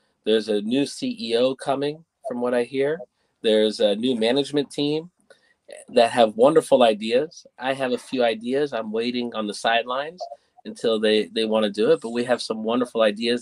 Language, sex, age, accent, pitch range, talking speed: English, male, 30-49, American, 125-195 Hz, 180 wpm